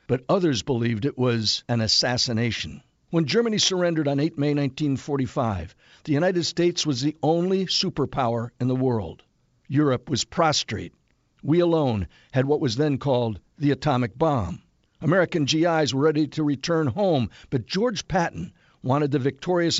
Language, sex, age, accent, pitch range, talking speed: English, male, 60-79, American, 125-165 Hz, 150 wpm